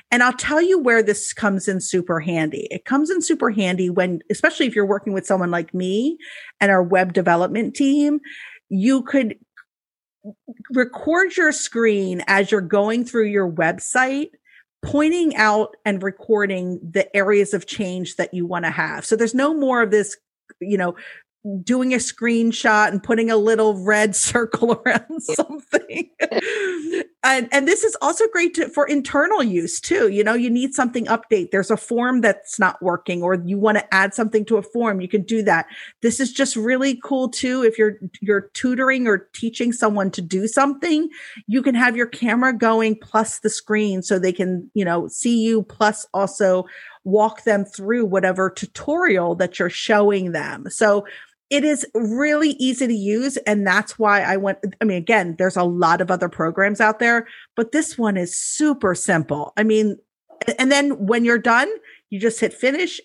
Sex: female